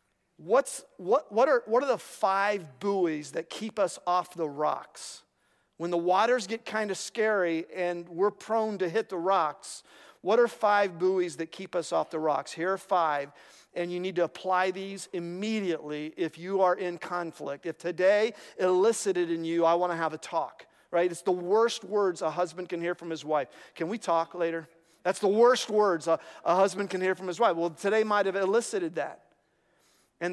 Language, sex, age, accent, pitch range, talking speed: English, male, 40-59, American, 165-200 Hz, 200 wpm